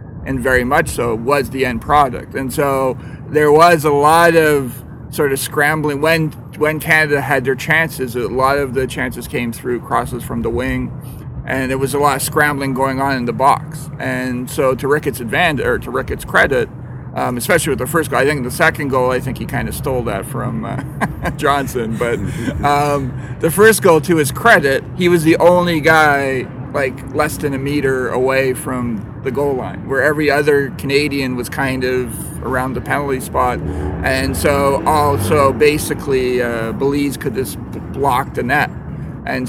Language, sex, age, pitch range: English, male, 40-59, 125-145 Hz